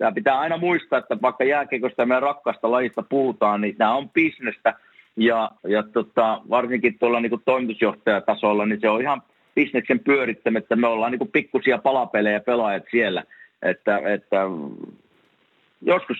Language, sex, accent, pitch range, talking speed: Finnish, male, native, 110-135 Hz, 150 wpm